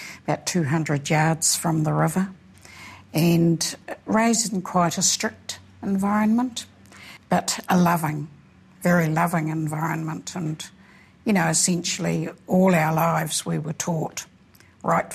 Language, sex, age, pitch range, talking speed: English, female, 60-79, 155-180 Hz, 120 wpm